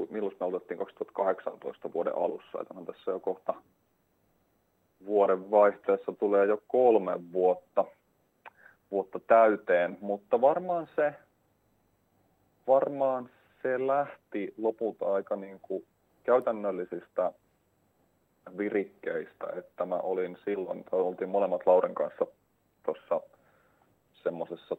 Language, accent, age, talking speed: Finnish, native, 30-49, 100 wpm